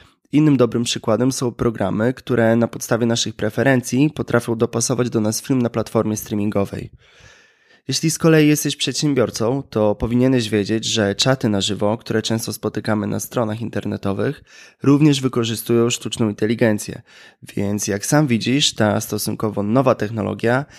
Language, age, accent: Polish, 20-39, native